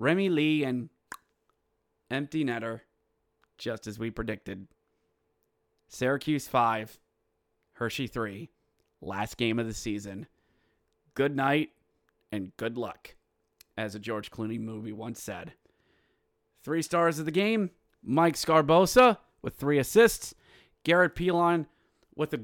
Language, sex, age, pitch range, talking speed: English, male, 30-49, 110-175 Hz, 120 wpm